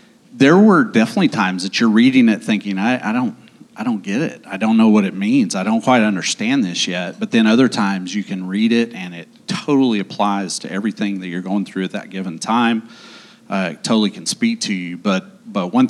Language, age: English, 40-59